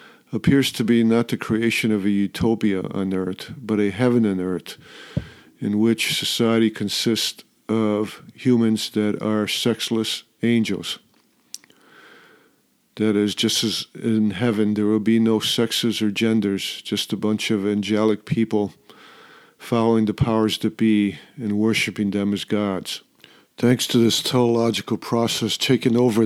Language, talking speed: English, 140 wpm